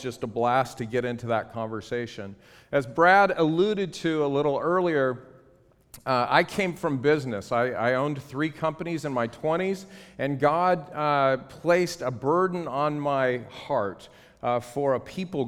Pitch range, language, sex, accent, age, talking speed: 120-150 Hz, English, male, American, 40-59, 160 wpm